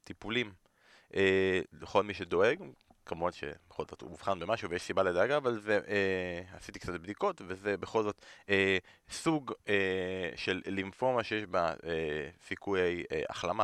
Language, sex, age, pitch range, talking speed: Hebrew, male, 20-39, 95-115 Hz, 140 wpm